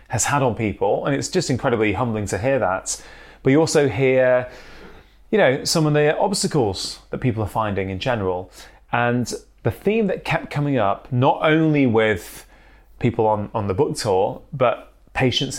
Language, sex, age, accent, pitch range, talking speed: English, male, 20-39, British, 110-145 Hz, 175 wpm